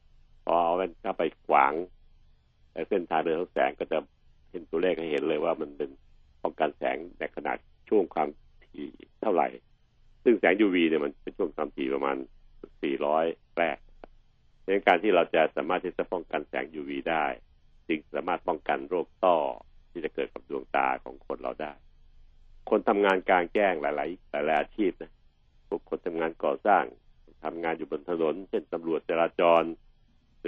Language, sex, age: Thai, male, 60-79